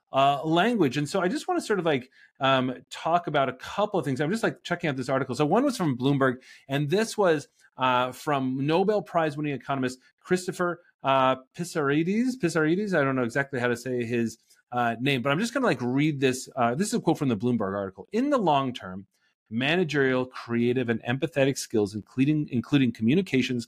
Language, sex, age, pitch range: English, male, 30-49, 125-160 Hz